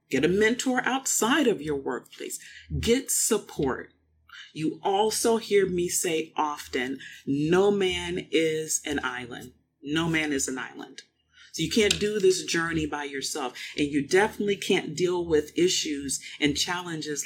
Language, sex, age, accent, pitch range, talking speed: English, female, 40-59, American, 155-225 Hz, 145 wpm